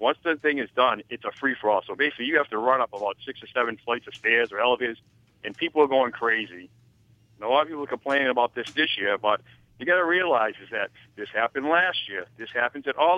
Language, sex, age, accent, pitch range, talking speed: English, male, 60-79, American, 115-140 Hz, 250 wpm